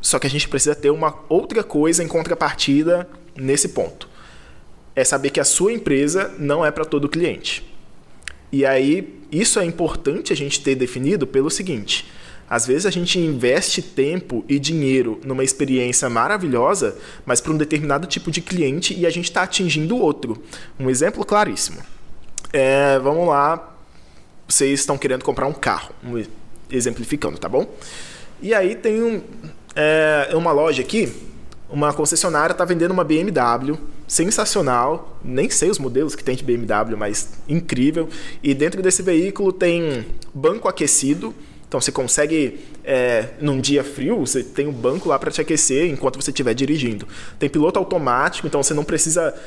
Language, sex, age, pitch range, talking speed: Portuguese, male, 20-39, 130-165 Hz, 160 wpm